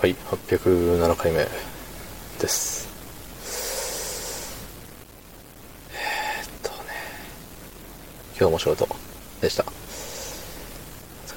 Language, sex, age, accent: Japanese, male, 20-39, native